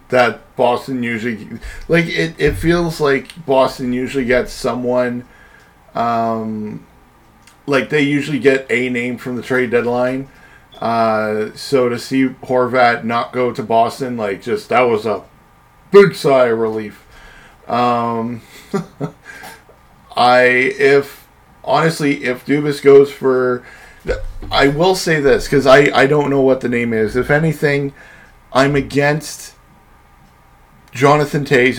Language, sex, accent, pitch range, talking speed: English, male, American, 120-140 Hz, 130 wpm